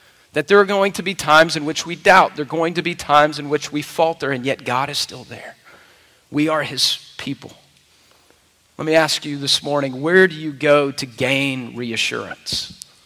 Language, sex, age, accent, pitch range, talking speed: English, male, 40-59, American, 140-175 Hz, 200 wpm